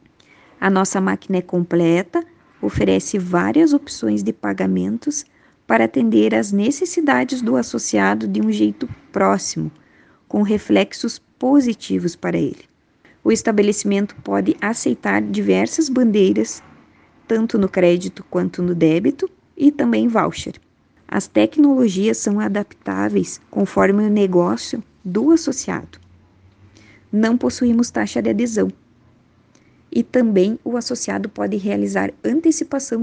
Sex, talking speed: female, 110 wpm